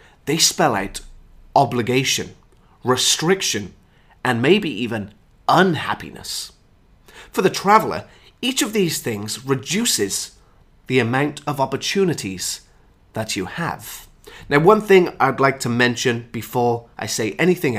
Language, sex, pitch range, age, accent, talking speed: English, male, 115-165 Hz, 30-49, British, 120 wpm